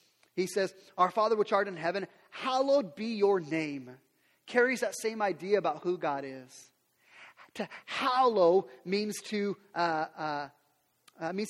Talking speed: 130 wpm